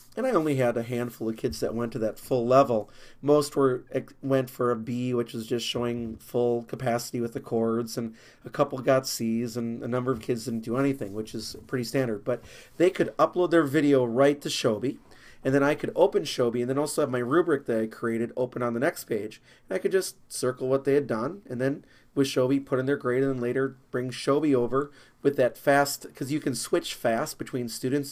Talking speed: 230 wpm